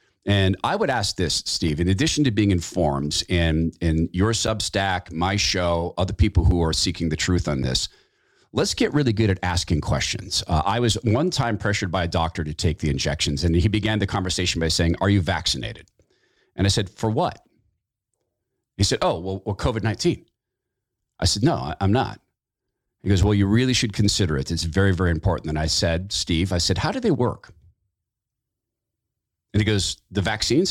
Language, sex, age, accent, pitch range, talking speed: English, male, 40-59, American, 85-110 Hz, 195 wpm